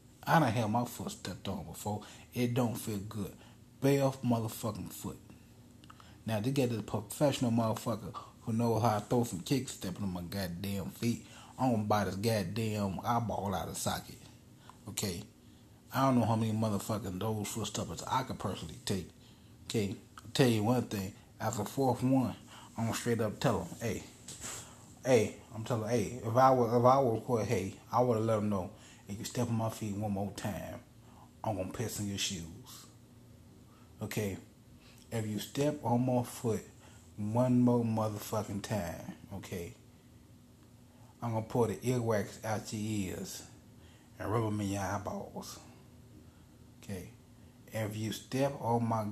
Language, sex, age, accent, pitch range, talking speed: English, male, 30-49, American, 105-120 Hz, 170 wpm